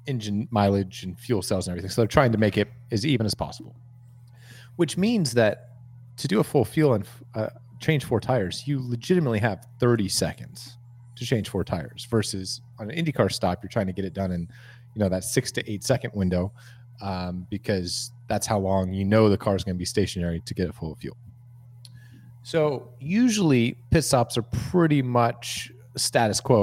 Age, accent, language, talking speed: 30-49, American, English, 200 wpm